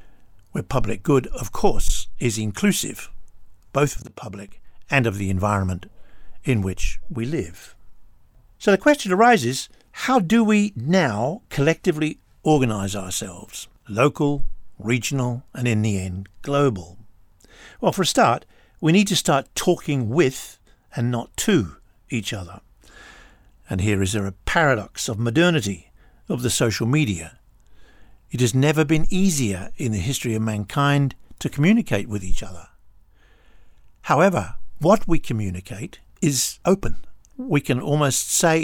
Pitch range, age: 105-150 Hz, 60-79